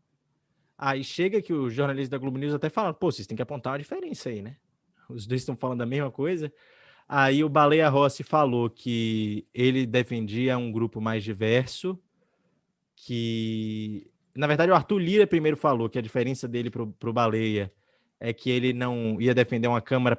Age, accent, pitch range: 20-39, Brazilian, 120-155 Hz